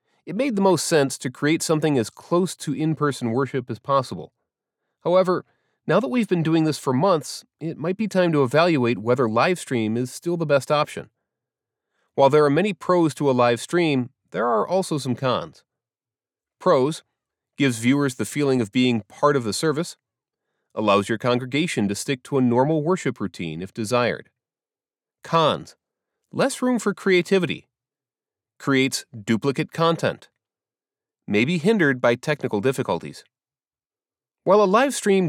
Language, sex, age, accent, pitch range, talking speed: English, male, 30-49, American, 125-175 Hz, 160 wpm